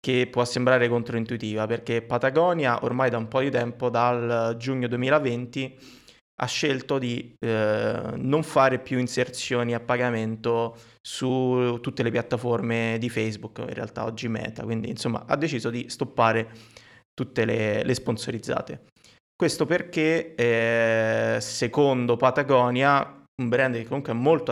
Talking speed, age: 135 wpm, 20-39